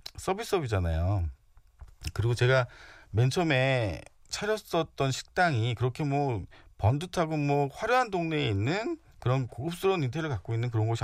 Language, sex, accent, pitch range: Korean, male, native, 100-140 Hz